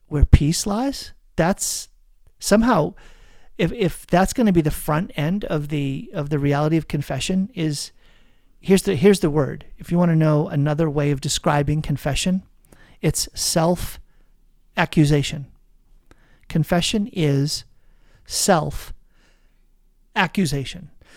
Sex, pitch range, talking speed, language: male, 150-190 Hz, 125 wpm, English